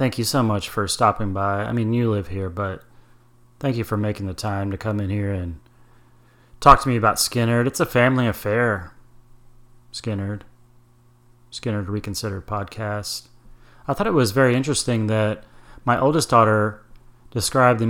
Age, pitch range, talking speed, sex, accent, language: 30-49, 105-125 Hz, 165 wpm, male, American, English